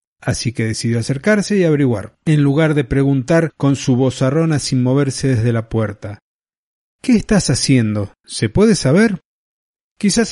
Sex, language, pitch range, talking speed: male, Spanish, 125-165 Hz, 150 wpm